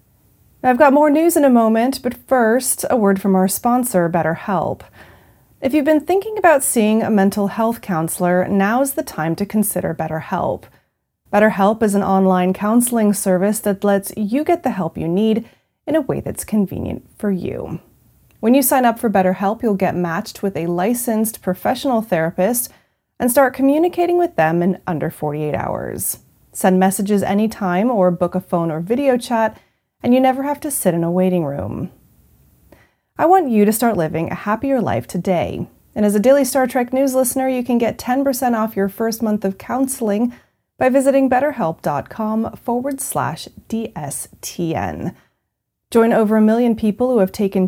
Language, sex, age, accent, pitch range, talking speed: English, female, 30-49, American, 185-250 Hz, 170 wpm